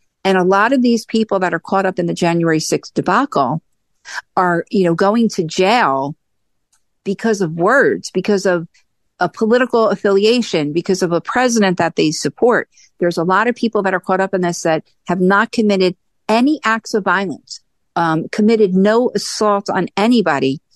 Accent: American